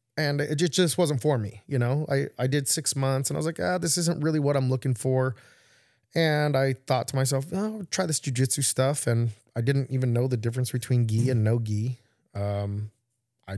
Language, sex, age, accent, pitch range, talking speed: English, male, 20-39, American, 115-135 Hz, 215 wpm